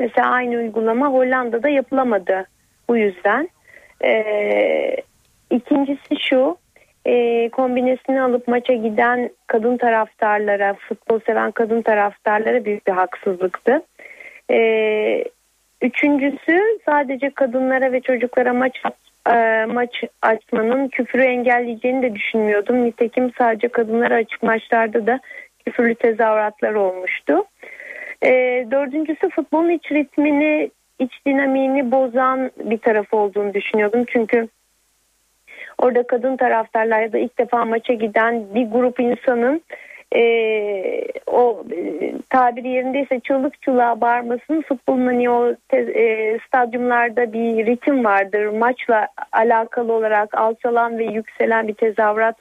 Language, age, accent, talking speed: Turkish, 40-59, native, 110 wpm